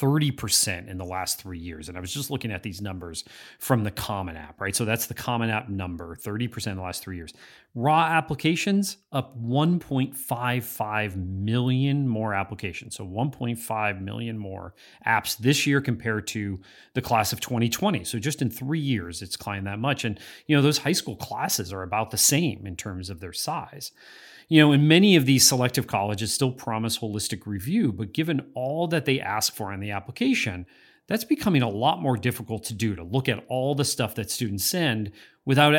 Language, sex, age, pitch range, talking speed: English, male, 30-49, 105-145 Hz, 195 wpm